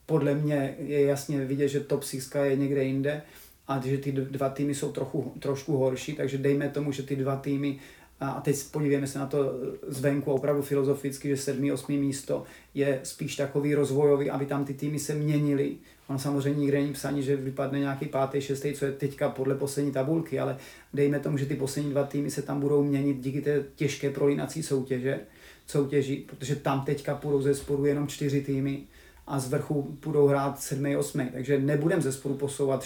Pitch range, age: 135-145 Hz, 30-49